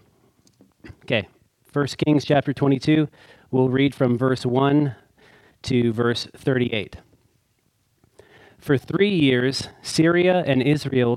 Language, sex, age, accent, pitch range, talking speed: English, male, 30-49, American, 120-150 Hz, 100 wpm